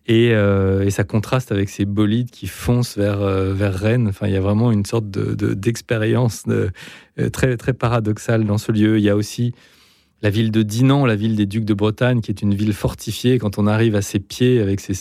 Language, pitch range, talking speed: French, 100-120 Hz, 210 wpm